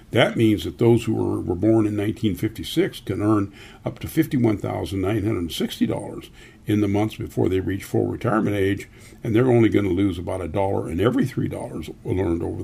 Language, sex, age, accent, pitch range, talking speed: English, male, 50-69, American, 100-120 Hz, 180 wpm